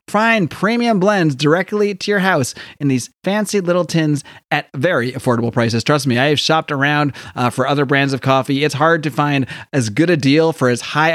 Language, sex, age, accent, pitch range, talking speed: English, male, 30-49, American, 125-160 Hz, 210 wpm